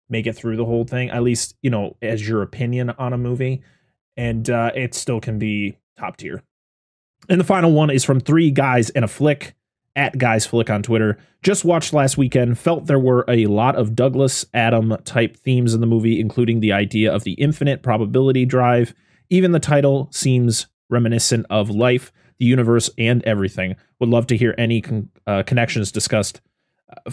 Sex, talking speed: male, 190 wpm